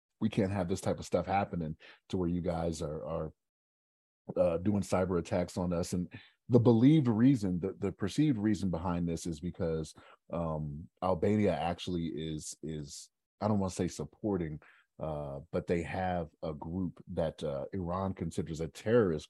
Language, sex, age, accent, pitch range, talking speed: English, male, 30-49, American, 75-95 Hz, 170 wpm